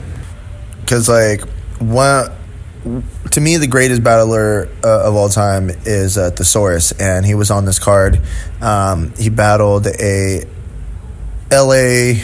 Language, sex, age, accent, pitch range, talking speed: English, male, 20-39, American, 95-110 Hz, 125 wpm